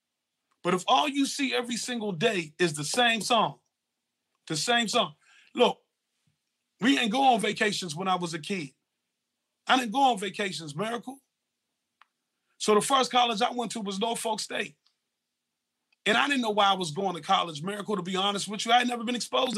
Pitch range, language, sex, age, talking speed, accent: 190-235 Hz, English, male, 30-49, 195 wpm, American